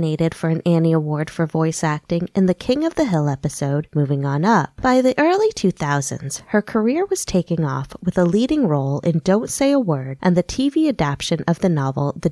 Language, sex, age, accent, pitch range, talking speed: English, female, 20-39, American, 155-235 Hz, 210 wpm